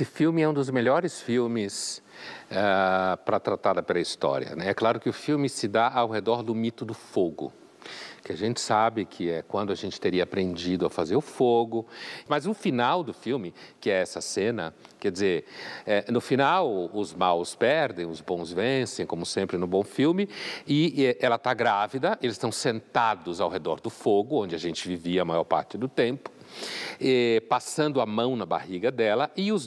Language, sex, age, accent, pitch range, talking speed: Portuguese, male, 60-79, Brazilian, 105-140 Hz, 190 wpm